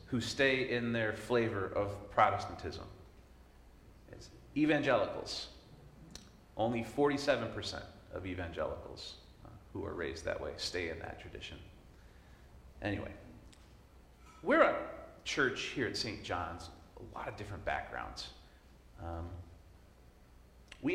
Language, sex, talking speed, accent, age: English, male, 105 wpm, American, 40-59